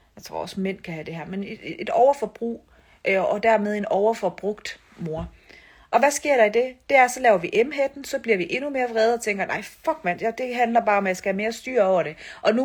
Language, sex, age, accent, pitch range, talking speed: Danish, female, 40-59, native, 200-275 Hz, 250 wpm